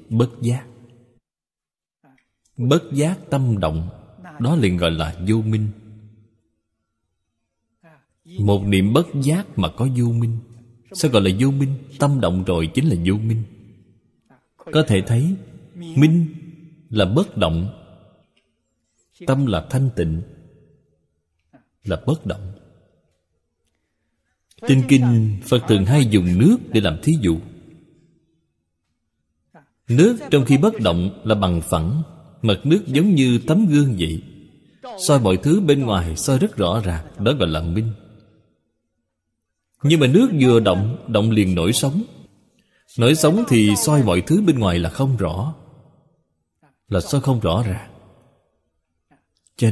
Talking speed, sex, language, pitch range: 135 wpm, male, Vietnamese, 90-145 Hz